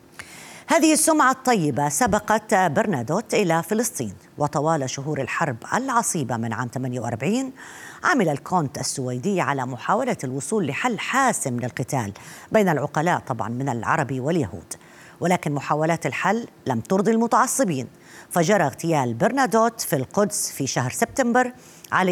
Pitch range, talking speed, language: 135-205 Hz, 120 wpm, Arabic